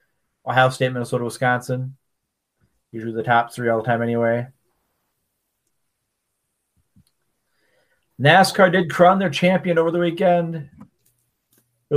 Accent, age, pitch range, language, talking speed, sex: American, 40-59, 120-145 Hz, English, 100 wpm, male